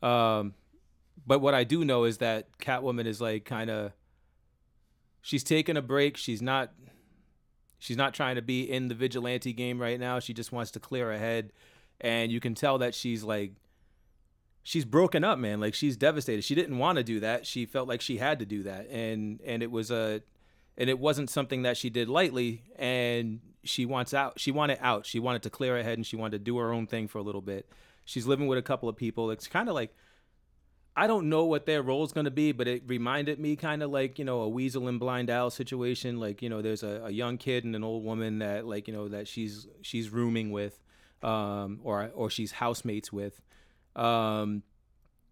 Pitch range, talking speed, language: 110-130 Hz, 220 wpm, English